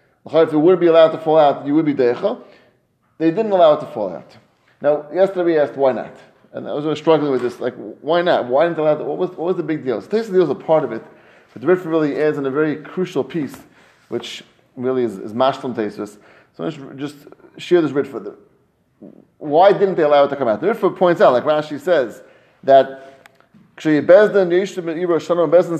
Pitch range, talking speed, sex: 145-180 Hz, 215 wpm, male